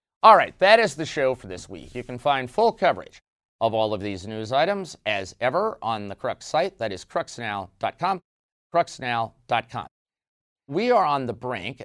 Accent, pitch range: American, 105-130 Hz